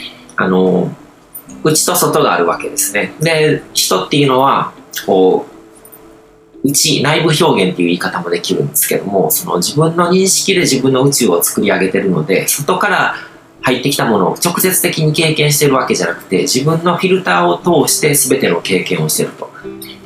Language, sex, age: Japanese, male, 40-59